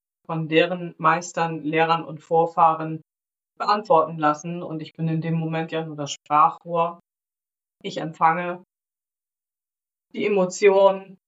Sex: female